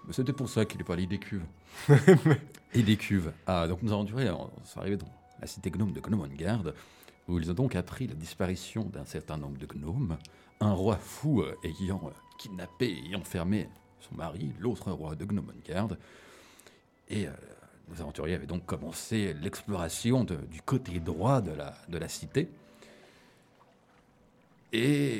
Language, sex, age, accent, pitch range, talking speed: French, male, 40-59, French, 90-125 Hz, 165 wpm